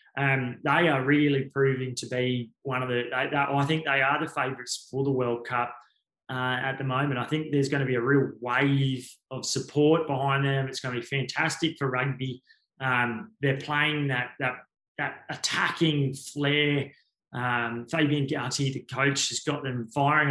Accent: Australian